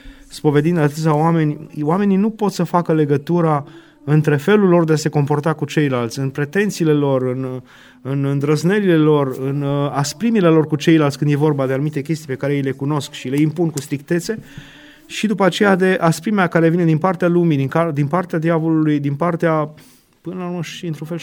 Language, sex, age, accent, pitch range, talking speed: Romanian, male, 30-49, native, 145-185 Hz, 190 wpm